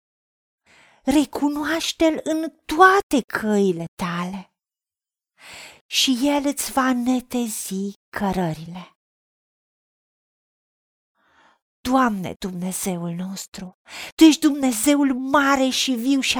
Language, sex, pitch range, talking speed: Romanian, female, 220-290 Hz, 75 wpm